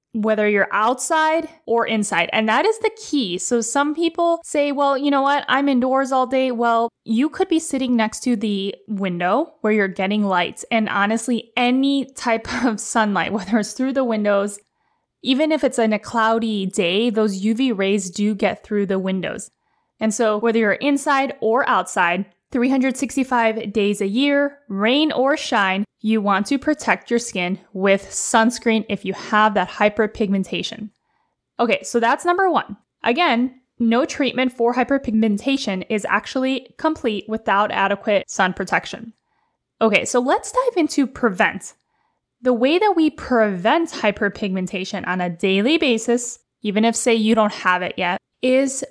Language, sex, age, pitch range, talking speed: English, female, 10-29, 205-265 Hz, 160 wpm